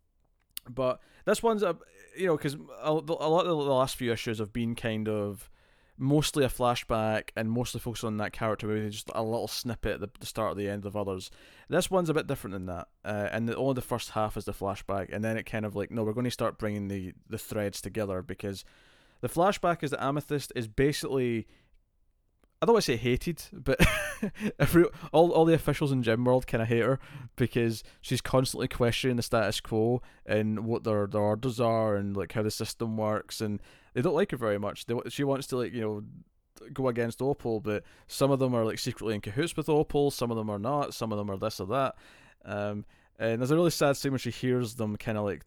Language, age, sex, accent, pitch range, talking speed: English, 20-39, male, British, 105-135 Hz, 230 wpm